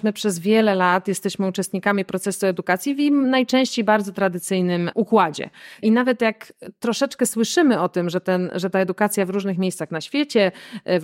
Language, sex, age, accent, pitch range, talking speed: Polish, female, 30-49, native, 180-225 Hz, 160 wpm